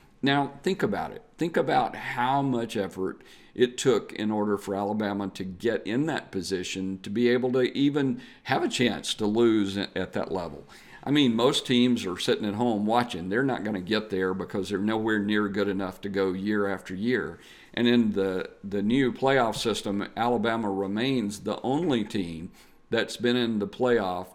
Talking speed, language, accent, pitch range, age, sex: 185 wpm, English, American, 100-120 Hz, 50-69, male